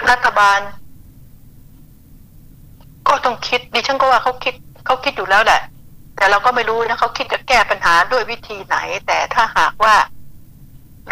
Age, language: 60-79, Thai